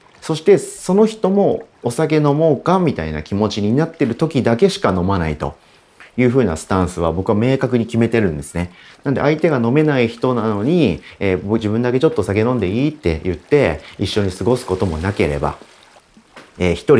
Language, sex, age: Japanese, male, 40-59